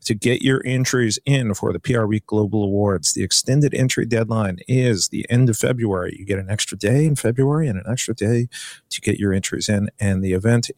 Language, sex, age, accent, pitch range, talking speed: English, male, 40-59, American, 100-130 Hz, 215 wpm